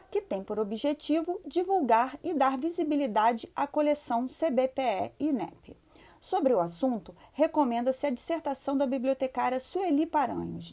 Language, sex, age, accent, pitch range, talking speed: Portuguese, female, 40-59, Brazilian, 235-300 Hz, 130 wpm